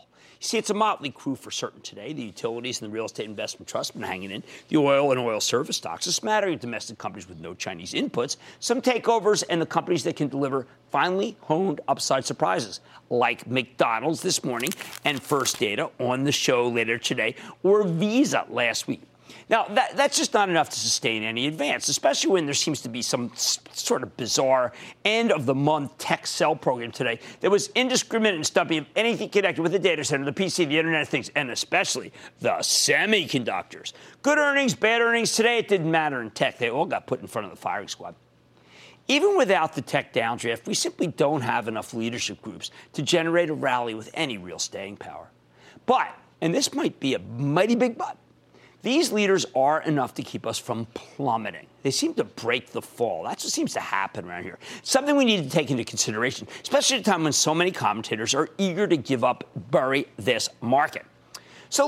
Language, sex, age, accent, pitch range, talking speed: English, male, 50-69, American, 135-210 Hz, 200 wpm